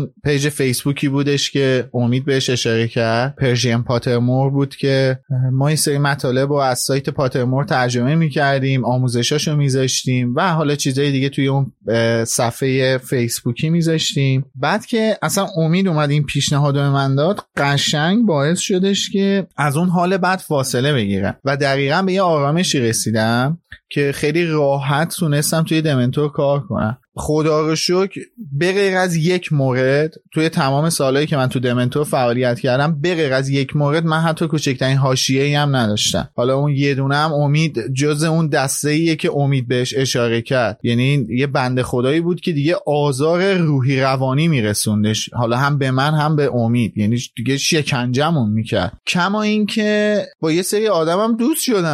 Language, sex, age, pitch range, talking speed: Persian, male, 30-49, 130-165 Hz, 155 wpm